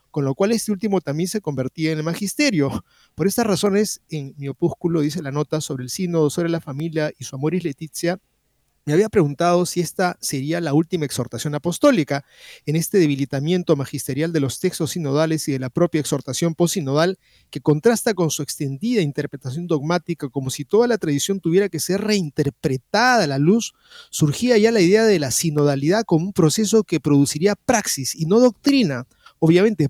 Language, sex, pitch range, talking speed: Spanish, male, 150-210 Hz, 185 wpm